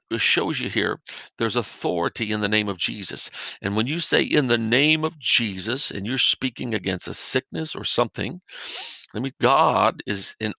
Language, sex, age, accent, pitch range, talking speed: English, male, 50-69, American, 100-130 Hz, 185 wpm